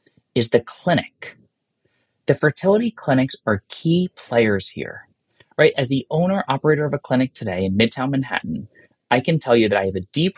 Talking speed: 175 wpm